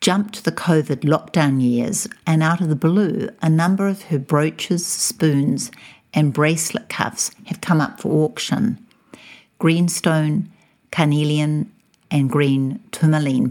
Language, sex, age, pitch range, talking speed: English, female, 60-79, 140-185 Hz, 130 wpm